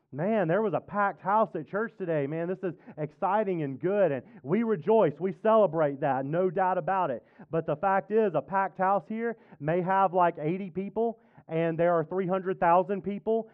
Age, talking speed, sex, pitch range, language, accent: 30-49, 190 wpm, male, 150-195 Hz, English, American